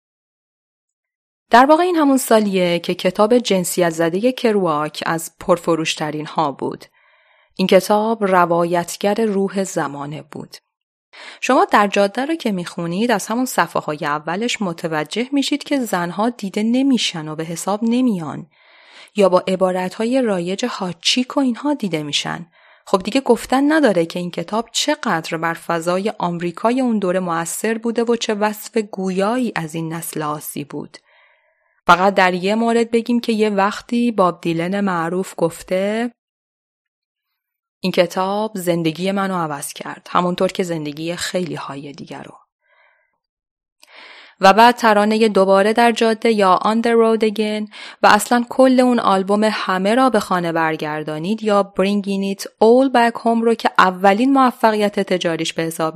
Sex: female